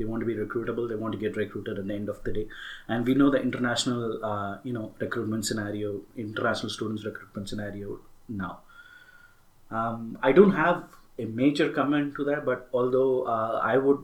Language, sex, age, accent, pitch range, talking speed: English, male, 30-49, Indian, 110-135 Hz, 190 wpm